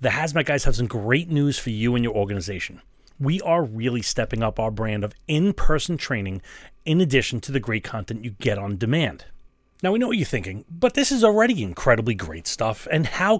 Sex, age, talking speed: male, 30-49, 210 wpm